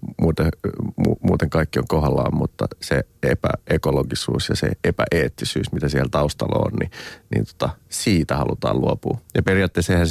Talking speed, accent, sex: 135 wpm, native, male